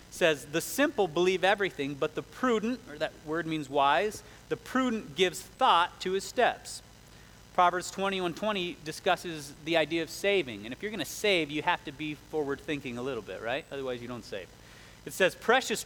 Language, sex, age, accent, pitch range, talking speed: English, male, 30-49, American, 140-185 Hz, 195 wpm